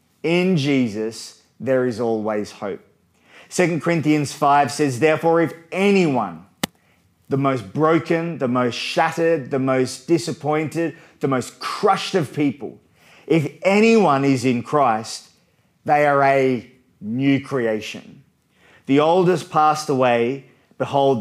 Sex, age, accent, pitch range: male, 30-49, Australian, 130-170 Hz